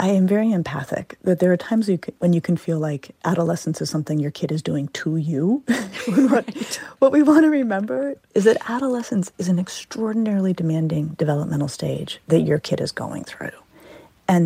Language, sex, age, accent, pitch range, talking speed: English, female, 40-59, American, 160-210 Hz, 180 wpm